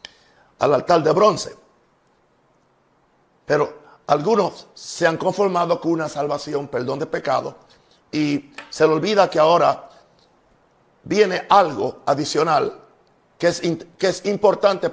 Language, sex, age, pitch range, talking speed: Spanish, male, 50-69, 145-170 Hz, 115 wpm